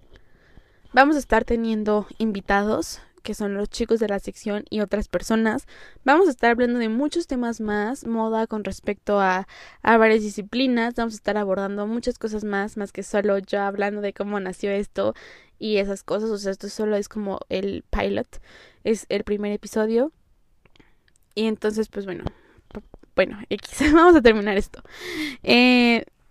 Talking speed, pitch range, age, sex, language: 160 wpm, 205-235 Hz, 10-29, female, Spanish